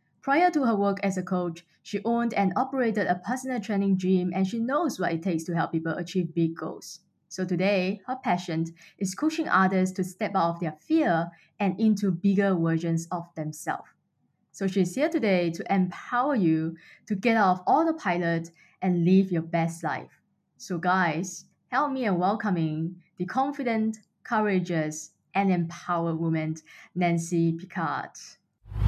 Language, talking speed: English, 165 wpm